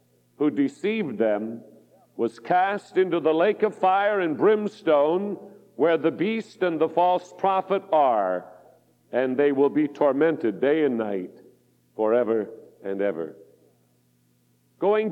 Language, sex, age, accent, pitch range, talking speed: English, male, 60-79, American, 130-180 Hz, 125 wpm